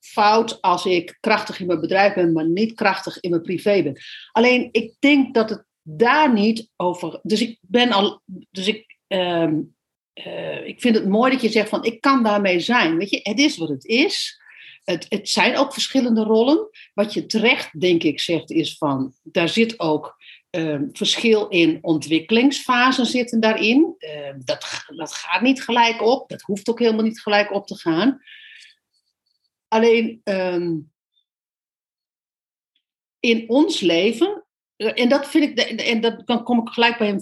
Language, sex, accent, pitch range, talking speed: Dutch, female, Dutch, 180-250 Hz, 170 wpm